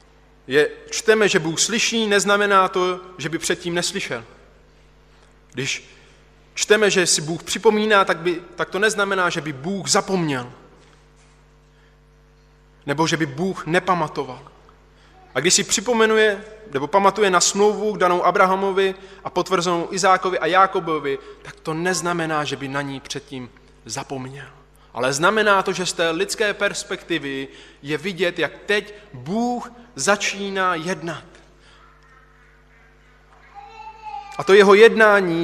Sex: male